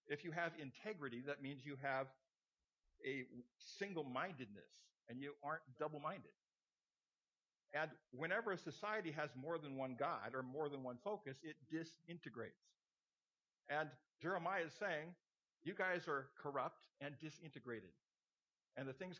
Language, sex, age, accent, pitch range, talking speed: English, male, 50-69, American, 135-175 Hz, 135 wpm